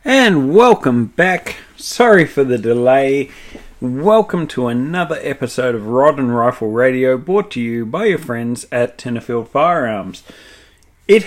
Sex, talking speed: male, 140 wpm